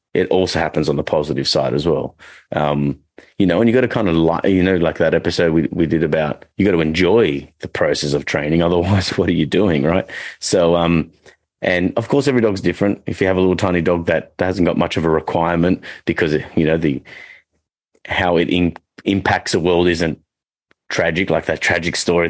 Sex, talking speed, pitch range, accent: male, 215 wpm, 75-90 Hz, Australian